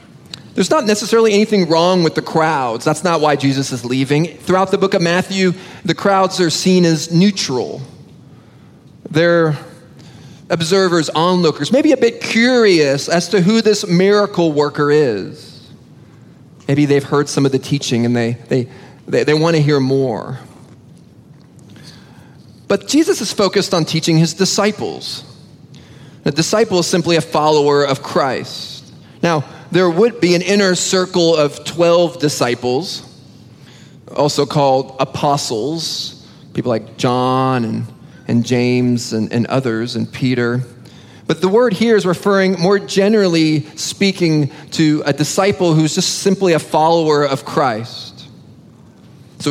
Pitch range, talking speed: 145-190 Hz, 140 wpm